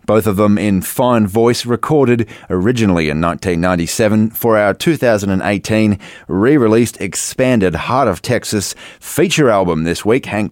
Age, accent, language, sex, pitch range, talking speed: 30-49, Australian, English, male, 95-120 Hz, 130 wpm